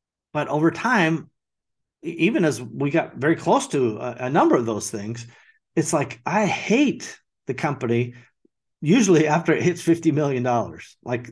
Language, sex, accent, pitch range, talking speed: English, male, American, 120-175 Hz, 155 wpm